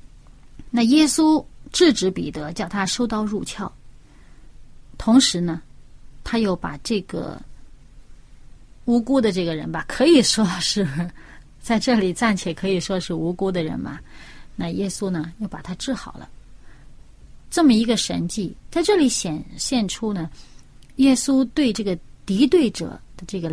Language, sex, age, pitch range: Chinese, female, 30-49, 175-250 Hz